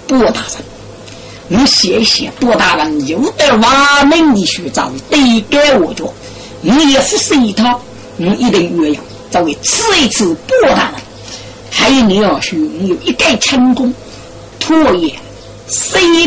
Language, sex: Chinese, female